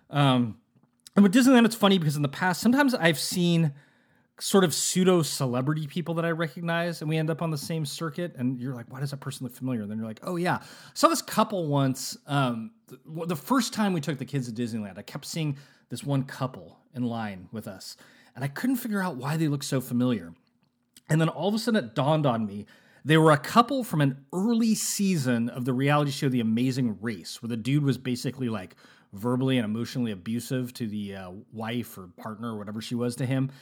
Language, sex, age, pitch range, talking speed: English, male, 30-49, 125-175 Hz, 225 wpm